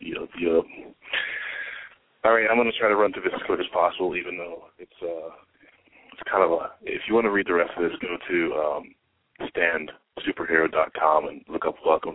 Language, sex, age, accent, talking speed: English, male, 30-49, American, 210 wpm